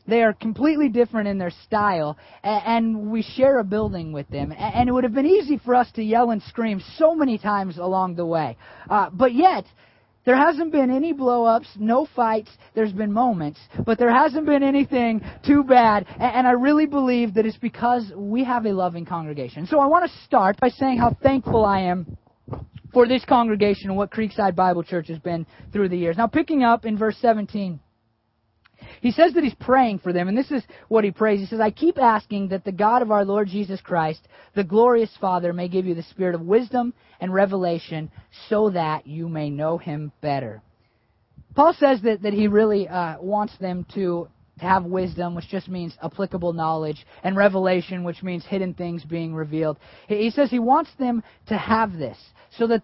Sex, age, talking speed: male, 30-49, 200 wpm